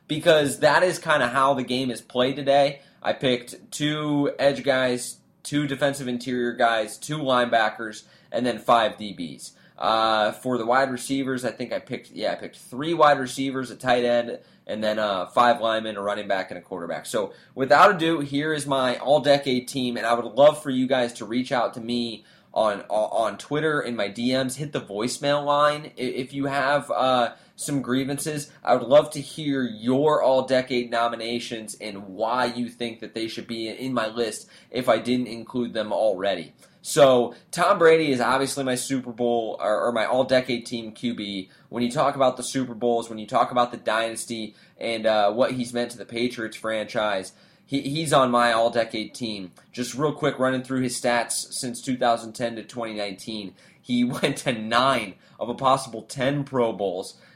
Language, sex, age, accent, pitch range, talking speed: English, male, 20-39, American, 115-140 Hz, 190 wpm